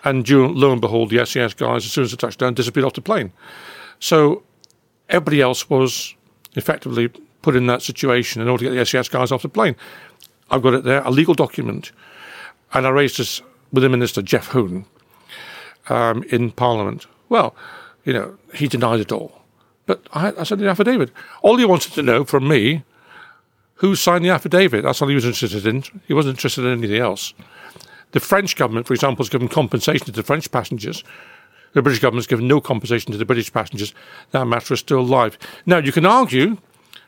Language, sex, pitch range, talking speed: English, male, 120-155 Hz, 195 wpm